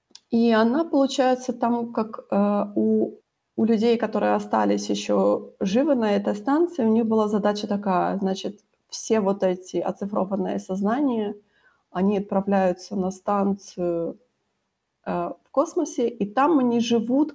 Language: Ukrainian